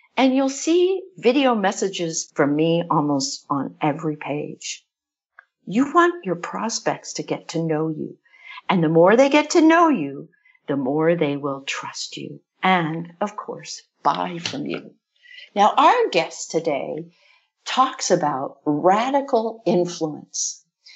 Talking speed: 135 wpm